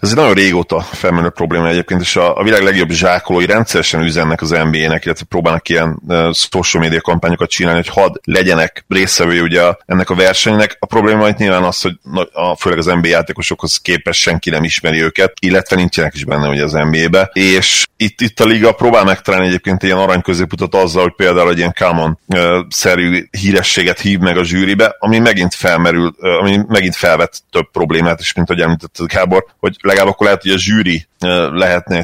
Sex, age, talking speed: male, 30-49, 185 wpm